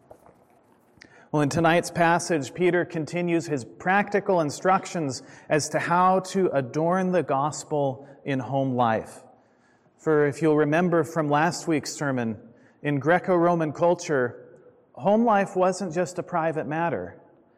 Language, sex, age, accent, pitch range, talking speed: English, male, 30-49, American, 135-175 Hz, 125 wpm